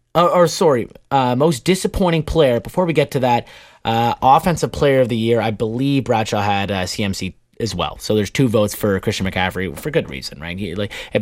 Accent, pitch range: American, 95-130 Hz